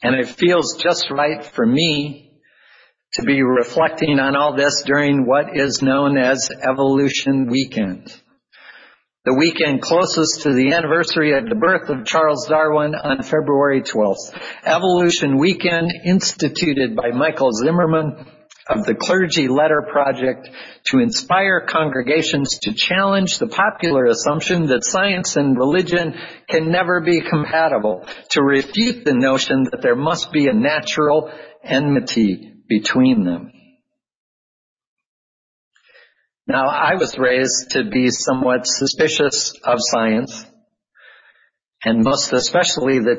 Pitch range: 130-165 Hz